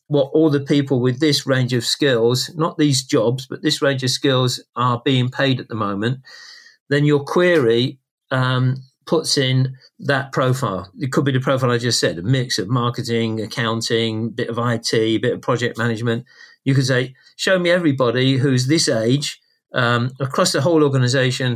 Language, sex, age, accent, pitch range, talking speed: English, male, 50-69, British, 125-145 Hz, 180 wpm